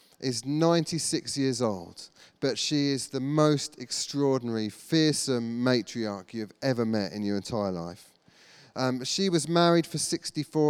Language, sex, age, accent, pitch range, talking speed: English, male, 30-49, British, 120-150 Hz, 140 wpm